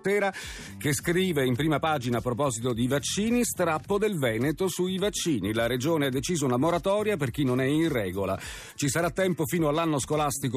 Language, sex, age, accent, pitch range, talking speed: Italian, male, 40-59, native, 115-170 Hz, 180 wpm